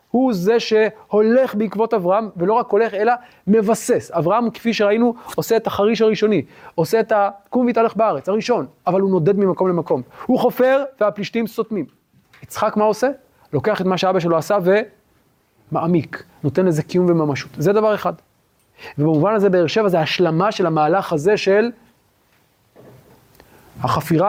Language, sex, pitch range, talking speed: Hebrew, male, 150-215 Hz, 150 wpm